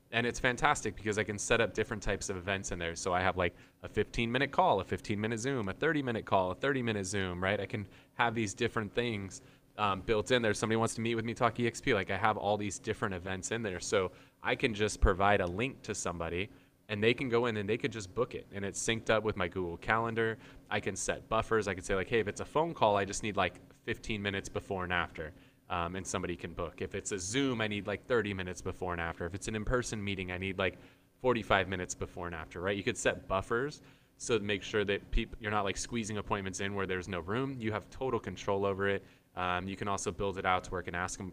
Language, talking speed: English, 265 wpm